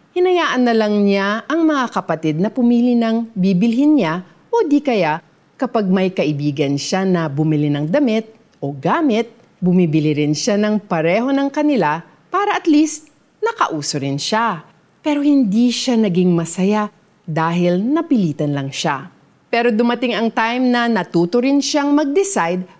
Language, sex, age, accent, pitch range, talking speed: Filipino, female, 40-59, native, 170-270 Hz, 145 wpm